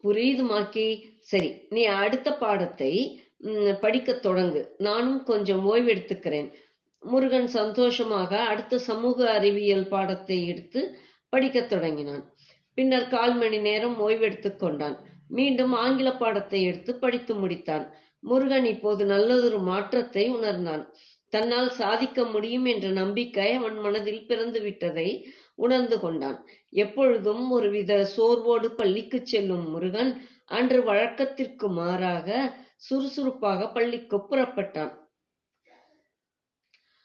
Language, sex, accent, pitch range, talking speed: Tamil, female, native, 200-245 Hz, 90 wpm